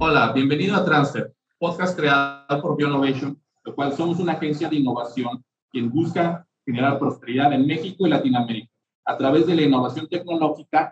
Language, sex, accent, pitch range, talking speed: Spanish, male, Mexican, 130-170 Hz, 160 wpm